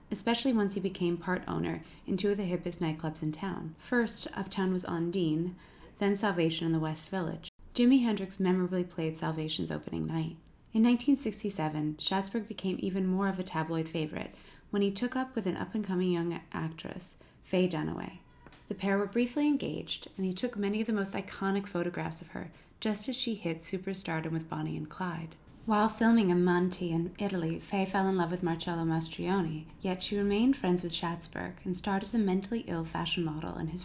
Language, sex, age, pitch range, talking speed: English, female, 30-49, 165-200 Hz, 185 wpm